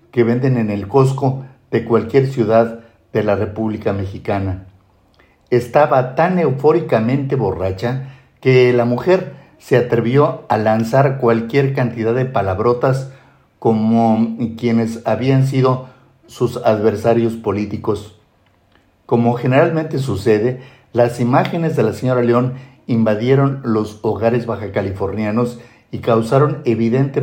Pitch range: 110-130 Hz